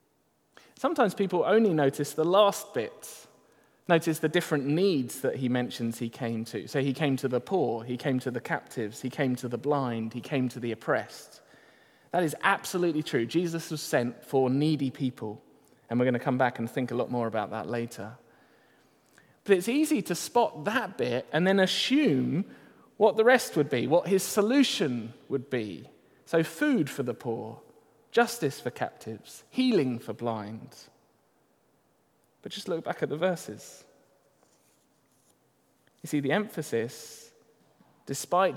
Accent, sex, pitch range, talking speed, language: British, male, 125-180 Hz, 165 wpm, English